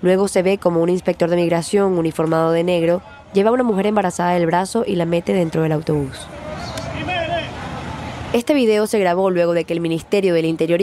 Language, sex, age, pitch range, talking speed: Spanish, female, 20-39, 160-195 Hz, 195 wpm